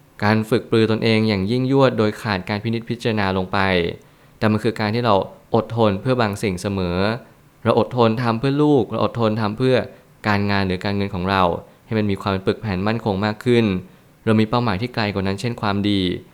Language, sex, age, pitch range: Thai, male, 20-39, 100-120 Hz